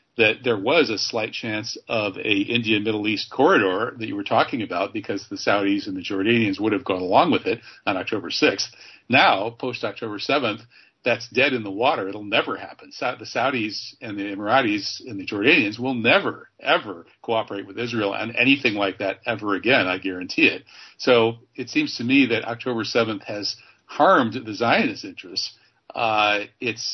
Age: 50-69